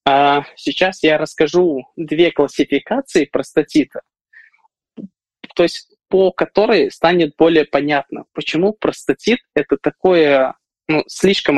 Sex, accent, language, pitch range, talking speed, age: male, native, Russian, 140-175 Hz, 100 wpm, 20-39